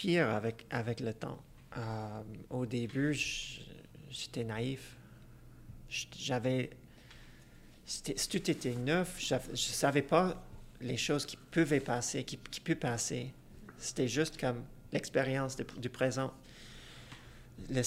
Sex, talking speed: male, 130 wpm